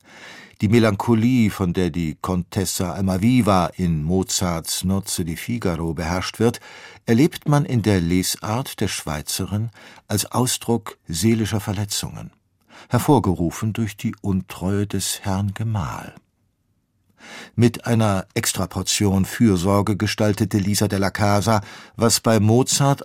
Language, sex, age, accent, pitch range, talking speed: German, male, 50-69, German, 95-115 Hz, 110 wpm